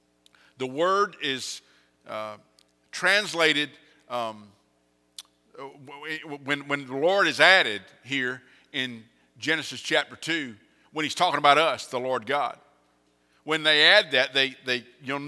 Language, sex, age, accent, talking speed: English, male, 50-69, American, 120 wpm